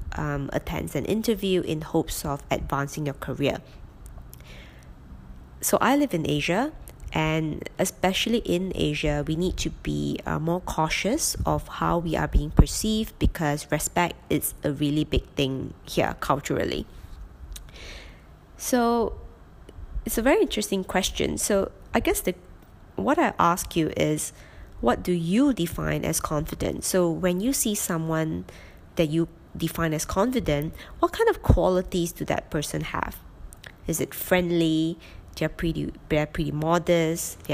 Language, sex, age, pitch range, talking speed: English, female, 20-39, 140-180 Hz, 140 wpm